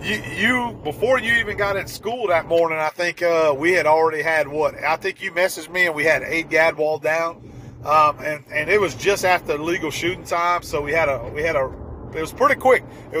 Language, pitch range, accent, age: English, 150-175 Hz, American, 40-59